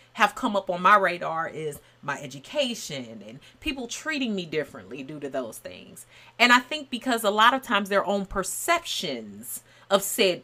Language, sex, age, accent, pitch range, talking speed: English, female, 30-49, American, 185-255 Hz, 180 wpm